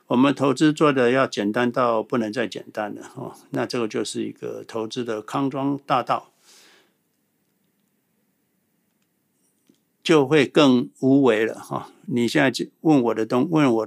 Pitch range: 115-140 Hz